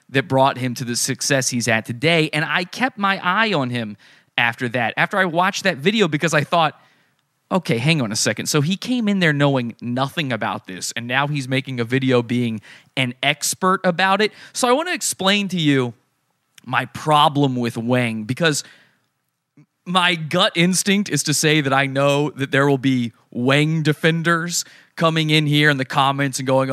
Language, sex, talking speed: English, male, 190 wpm